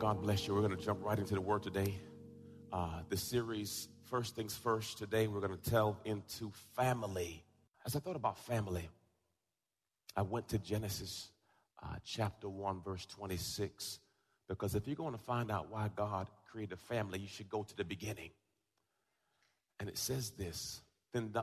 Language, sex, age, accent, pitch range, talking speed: English, male, 40-59, American, 100-135 Hz, 175 wpm